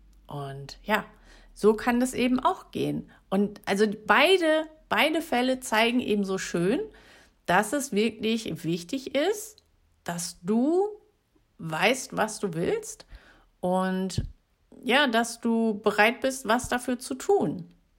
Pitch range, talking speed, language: 185-255 Hz, 125 wpm, German